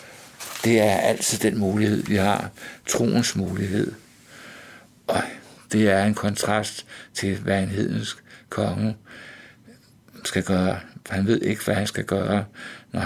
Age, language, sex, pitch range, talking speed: 60-79, Danish, male, 95-105 Hz, 135 wpm